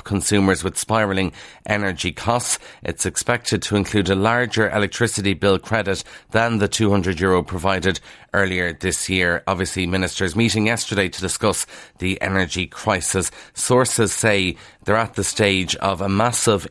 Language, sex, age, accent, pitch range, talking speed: English, male, 30-49, Irish, 95-110 Hz, 145 wpm